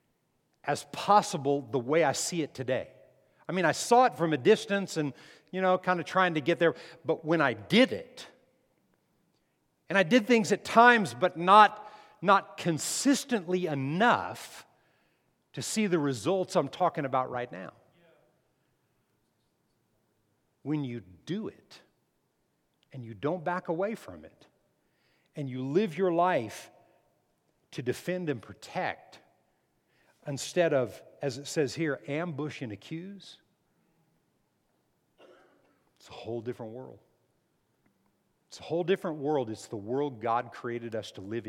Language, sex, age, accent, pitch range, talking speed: English, male, 50-69, American, 135-200 Hz, 140 wpm